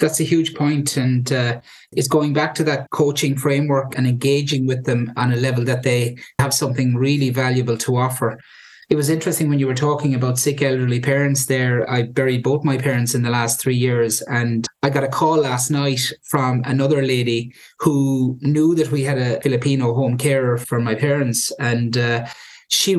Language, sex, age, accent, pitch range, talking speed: English, male, 30-49, Irish, 125-150 Hz, 195 wpm